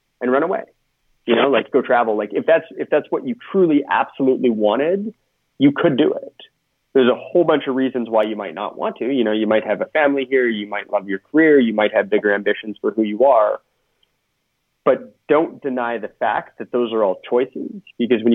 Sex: male